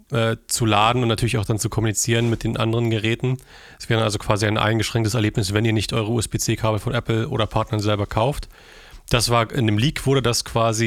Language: German